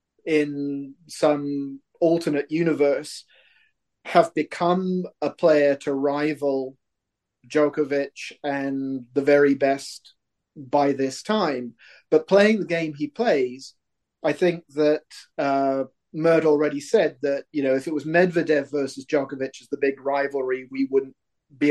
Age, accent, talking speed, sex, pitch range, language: 30-49, British, 130 wpm, male, 140-165 Hz, English